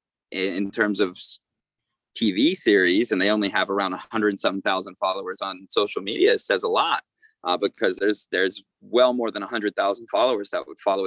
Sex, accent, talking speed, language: male, American, 195 wpm, English